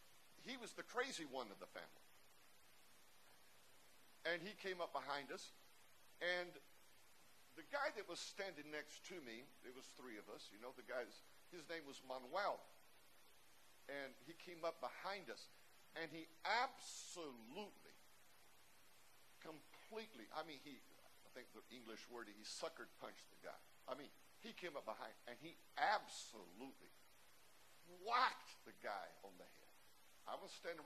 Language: English